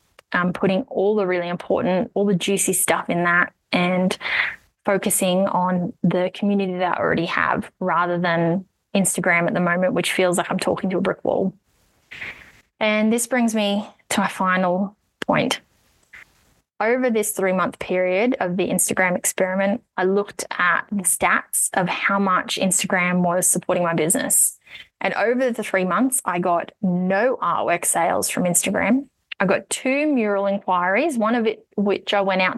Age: 20-39